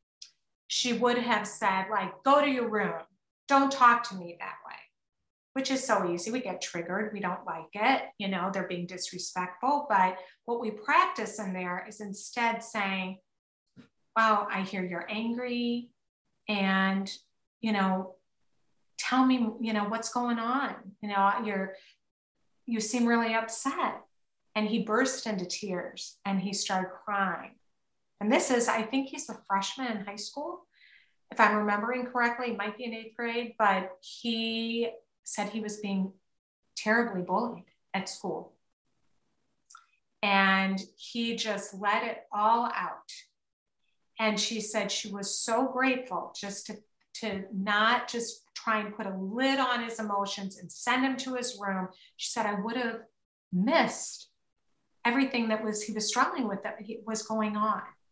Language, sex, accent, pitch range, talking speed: English, female, American, 195-240 Hz, 160 wpm